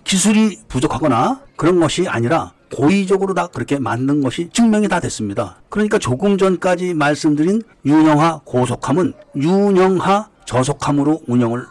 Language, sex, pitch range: Korean, male, 135-195 Hz